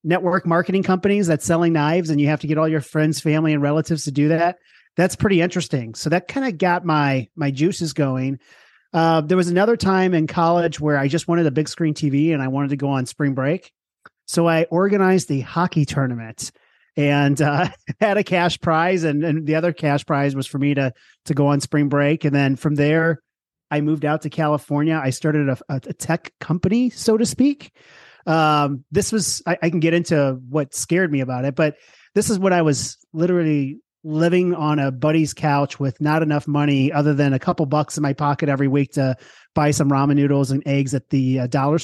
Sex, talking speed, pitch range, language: male, 215 wpm, 140-170 Hz, English